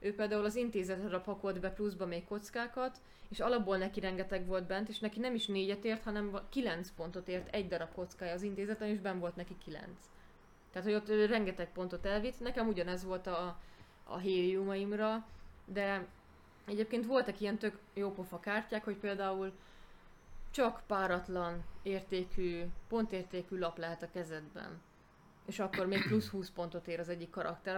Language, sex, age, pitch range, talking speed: Hungarian, female, 20-39, 180-210 Hz, 160 wpm